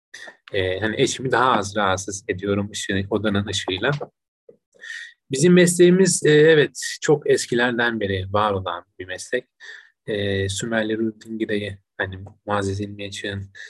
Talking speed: 120 wpm